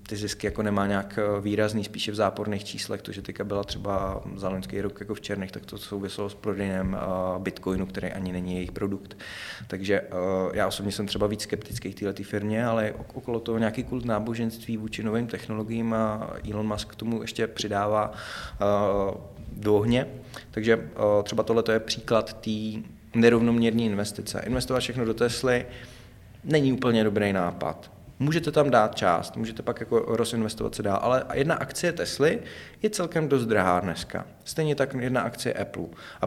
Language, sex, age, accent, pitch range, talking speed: Czech, male, 20-39, native, 100-120 Hz, 165 wpm